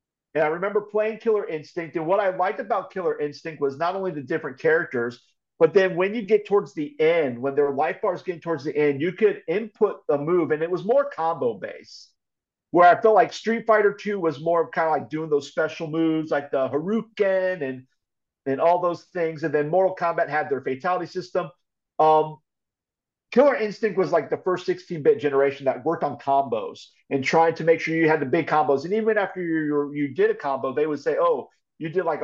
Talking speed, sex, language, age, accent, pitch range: 215 wpm, male, English, 50-69, American, 150-200 Hz